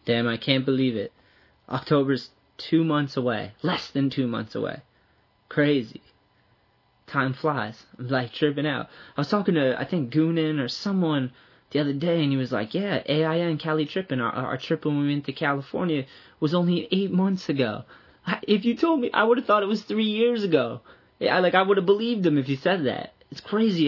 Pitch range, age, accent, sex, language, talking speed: 140-180 Hz, 20-39, American, male, English, 200 wpm